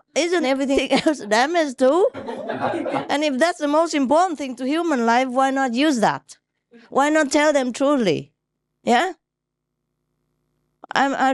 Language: English